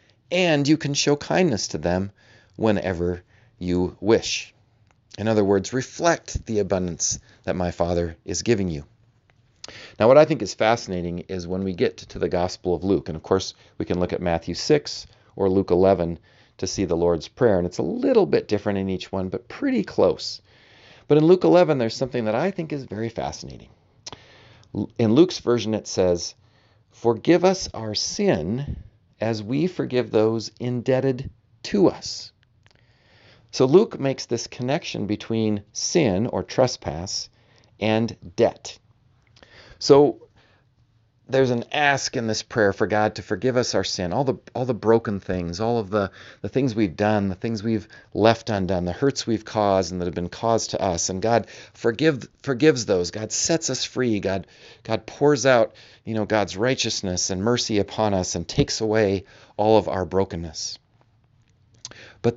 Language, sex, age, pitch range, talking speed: English, male, 40-59, 95-120 Hz, 170 wpm